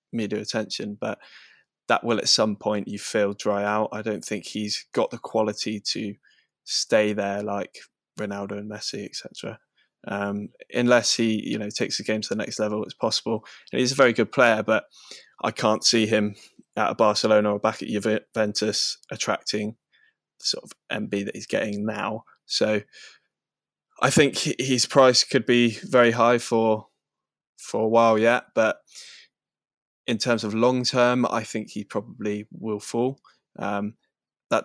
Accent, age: British, 20-39